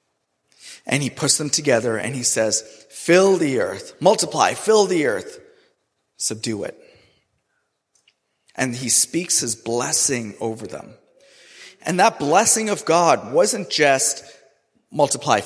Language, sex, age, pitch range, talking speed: English, male, 30-49, 140-225 Hz, 125 wpm